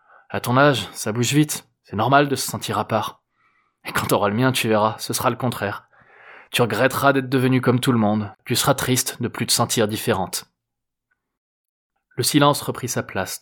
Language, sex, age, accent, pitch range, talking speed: French, male, 20-39, French, 110-130 Hz, 210 wpm